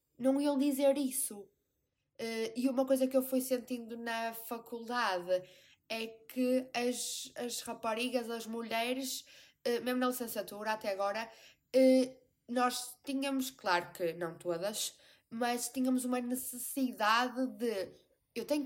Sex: female